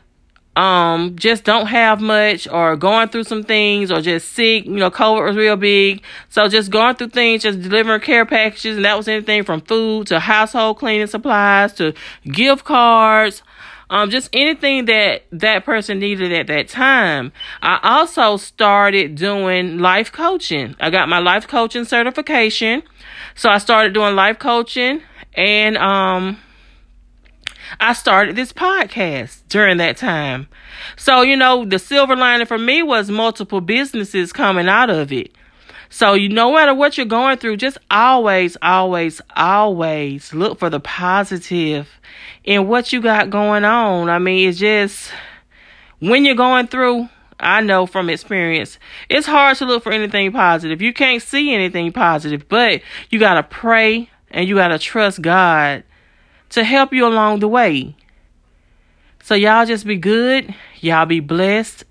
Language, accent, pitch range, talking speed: English, American, 185-235 Hz, 160 wpm